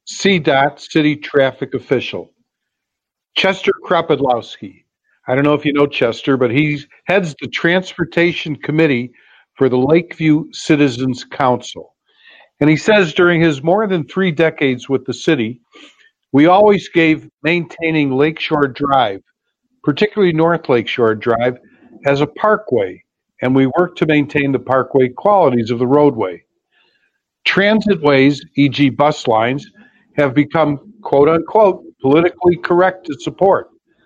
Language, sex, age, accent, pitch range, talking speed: English, male, 50-69, American, 130-180 Hz, 125 wpm